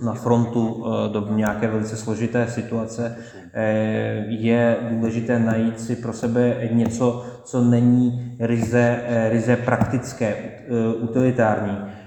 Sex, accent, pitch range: male, native, 110-120 Hz